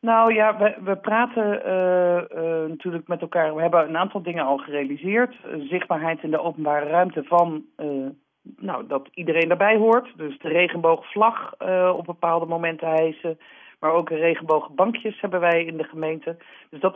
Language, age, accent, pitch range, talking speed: Dutch, 40-59, Dutch, 155-180 Hz, 165 wpm